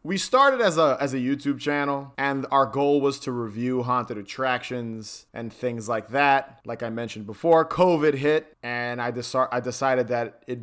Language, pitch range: English, 125-150 Hz